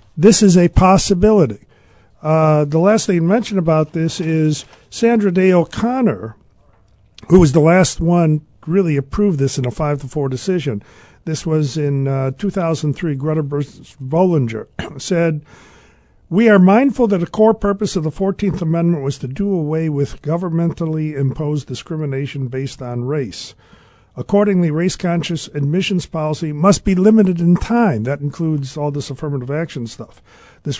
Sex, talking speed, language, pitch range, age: male, 155 wpm, English, 145-190 Hz, 50-69